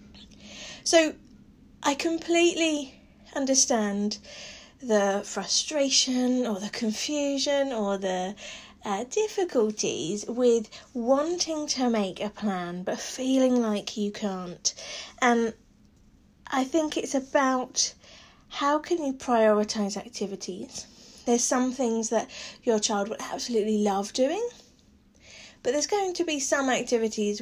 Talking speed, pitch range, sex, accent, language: 110 wpm, 205-265 Hz, female, British, English